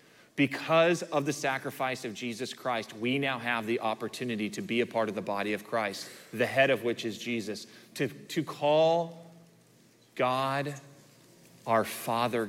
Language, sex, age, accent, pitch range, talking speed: English, male, 30-49, American, 115-155 Hz, 160 wpm